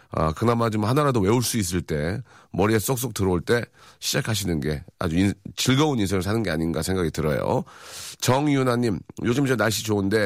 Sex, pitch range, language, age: male, 95-120 Hz, Korean, 40-59